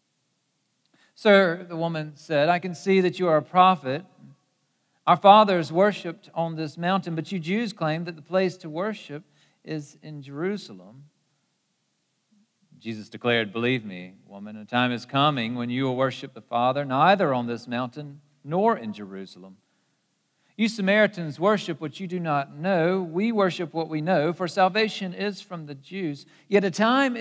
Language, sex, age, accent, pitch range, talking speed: English, male, 50-69, American, 125-185 Hz, 165 wpm